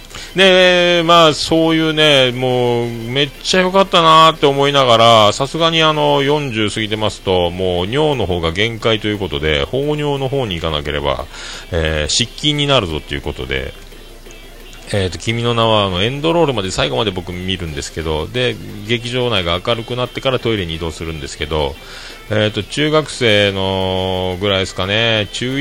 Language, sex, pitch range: Japanese, male, 95-135 Hz